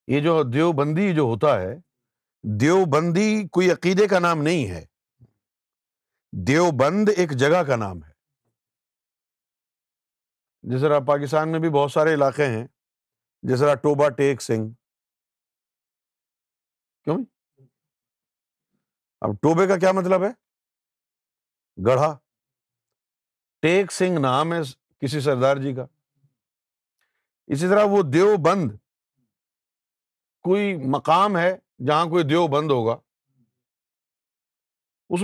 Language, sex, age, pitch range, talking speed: Urdu, male, 50-69, 130-185 Hz, 100 wpm